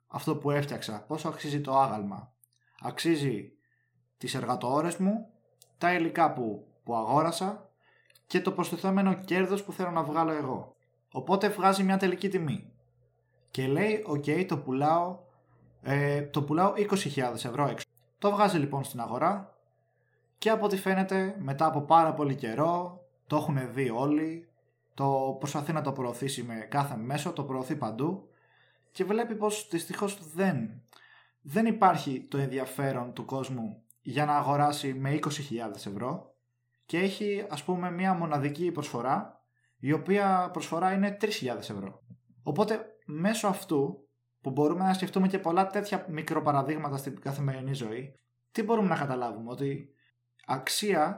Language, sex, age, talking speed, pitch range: Greek, male, 20-39, 140 wpm, 130-180 Hz